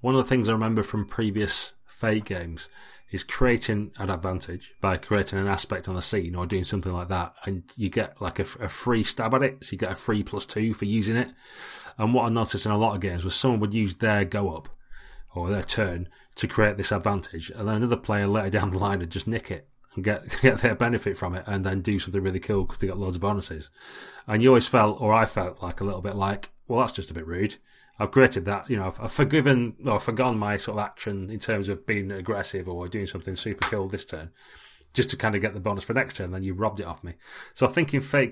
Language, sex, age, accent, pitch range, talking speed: English, male, 30-49, British, 95-115 Hz, 260 wpm